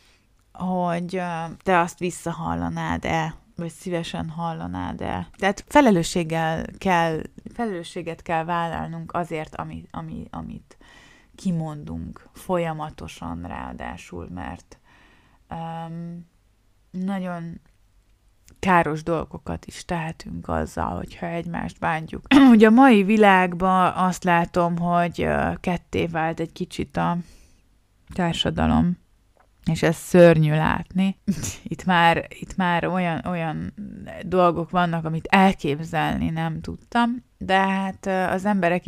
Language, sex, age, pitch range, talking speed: Hungarian, female, 20-39, 120-185 Hz, 90 wpm